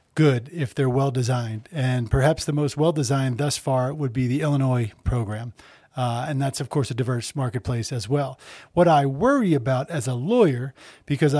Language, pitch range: English, 140-175 Hz